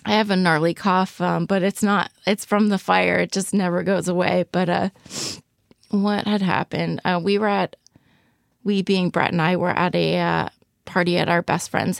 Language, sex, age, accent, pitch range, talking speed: English, female, 20-39, American, 175-195 Hz, 195 wpm